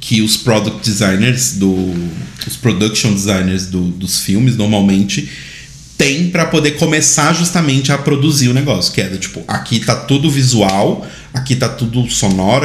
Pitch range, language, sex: 110-145 Hz, Portuguese, male